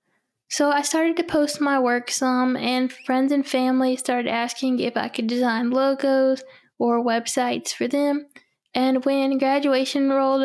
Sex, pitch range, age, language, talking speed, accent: female, 250-280 Hz, 10-29, English, 155 wpm, American